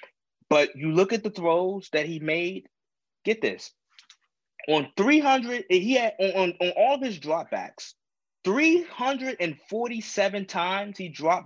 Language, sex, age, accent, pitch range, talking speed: English, male, 20-39, American, 150-205 Hz, 135 wpm